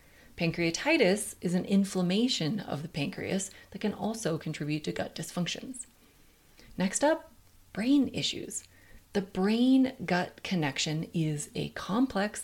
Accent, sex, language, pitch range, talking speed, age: American, female, English, 165-230 Hz, 115 wpm, 30-49